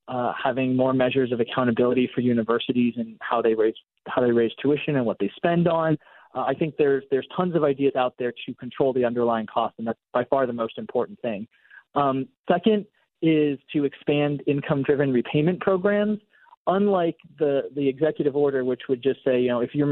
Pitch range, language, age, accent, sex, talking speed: 125-150 Hz, English, 30-49, American, male, 195 wpm